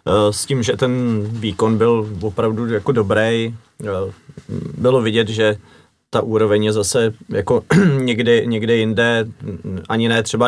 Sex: male